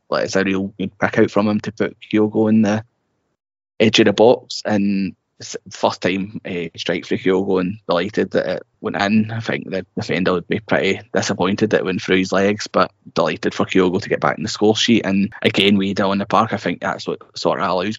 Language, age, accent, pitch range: English, 10-29, British, 95-110 Hz